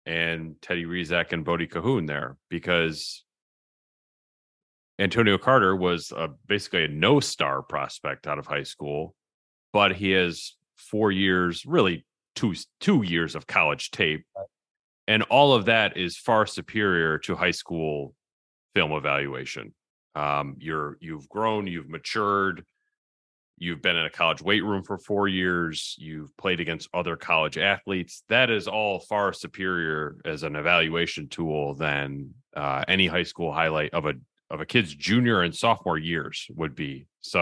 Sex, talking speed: male, 150 wpm